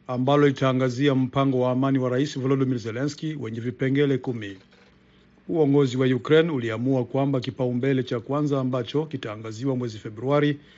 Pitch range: 125-145 Hz